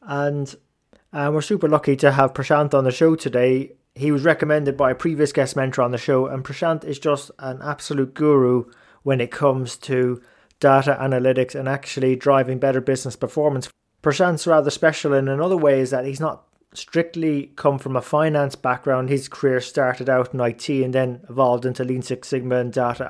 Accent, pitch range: British, 130-150 Hz